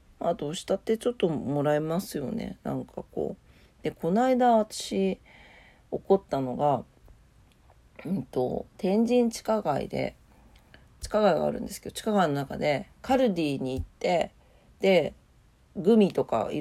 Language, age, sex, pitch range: Japanese, 40-59, female, 150-225 Hz